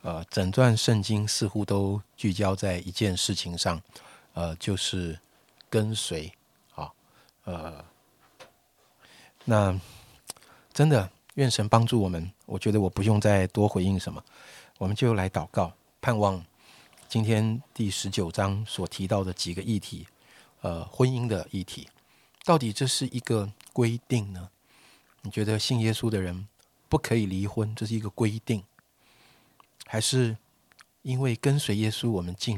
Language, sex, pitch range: Chinese, male, 95-115 Hz